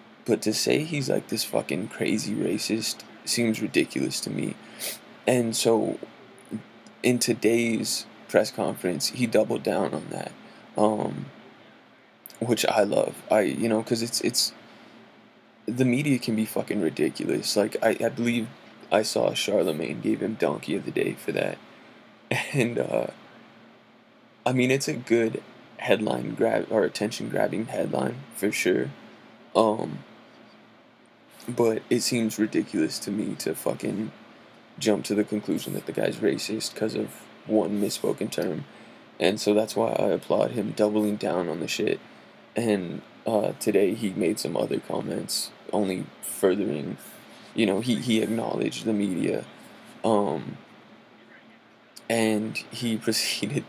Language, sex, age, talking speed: English, male, 20-39, 140 wpm